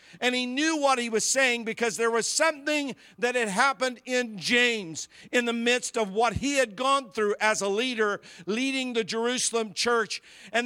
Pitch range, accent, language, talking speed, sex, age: 205-255 Hz, American, English, 185 wpm, male, 50-69